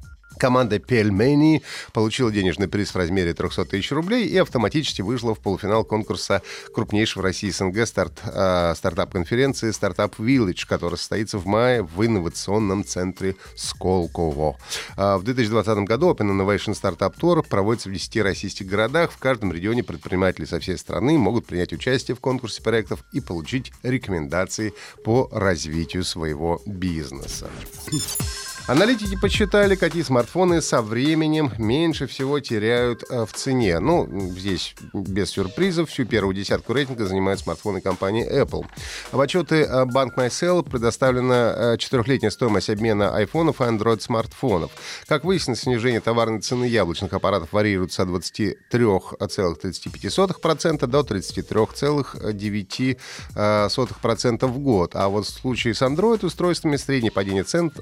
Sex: male